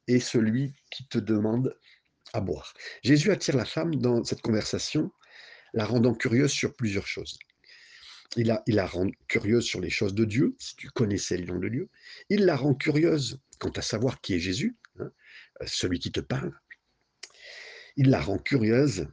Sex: male